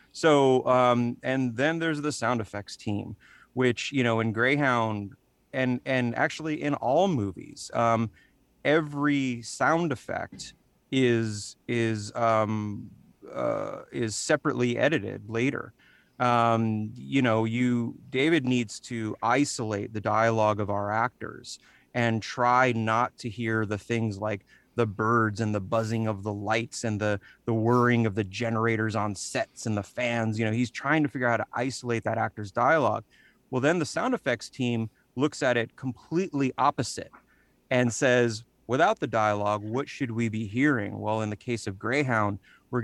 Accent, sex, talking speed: American, male, 160 wpm